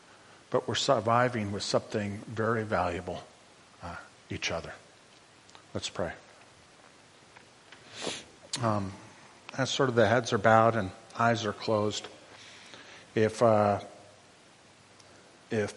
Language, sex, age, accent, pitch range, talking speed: English, male, 50-69, American, 105-120 Hz, 105 wpm